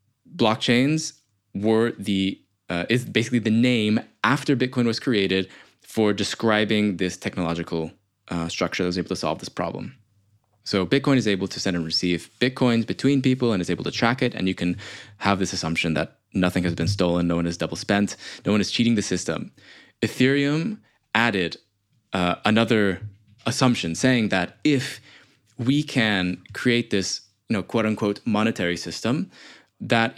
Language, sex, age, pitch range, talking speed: English, male, 20-39, 95-125 Hz, 165 wpm